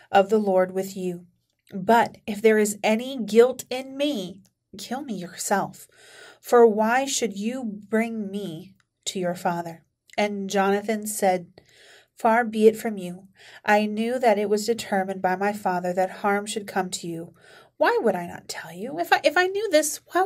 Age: 30-49